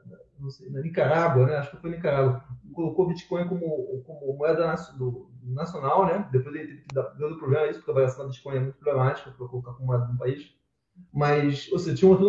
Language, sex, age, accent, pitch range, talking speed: English, male, 20-39, Brazilian, 135-195 Hz, 220 wpm